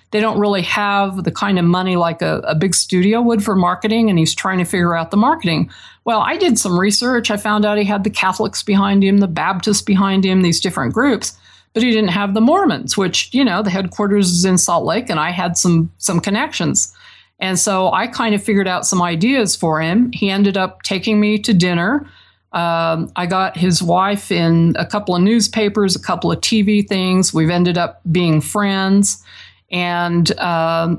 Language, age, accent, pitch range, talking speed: English, 50-69, American, 175-215 Hz, 205 wpm